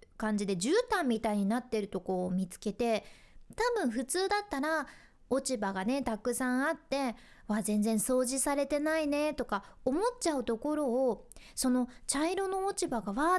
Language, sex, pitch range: Japanese, female, 225-315 Hz